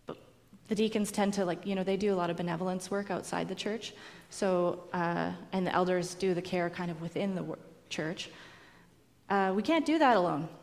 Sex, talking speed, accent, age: female, 205 wpm, American, 30-49